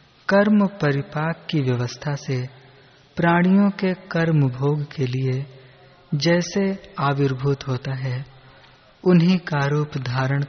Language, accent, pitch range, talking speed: Hindi, native, 135-165 Hz, 110 wpm